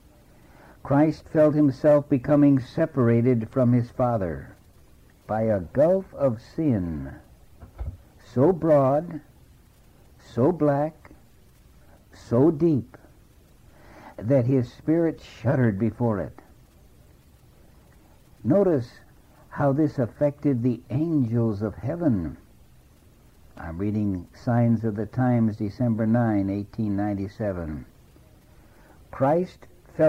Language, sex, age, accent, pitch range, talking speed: English, male, 60-79, American, 100-145 Hz, 85 wpm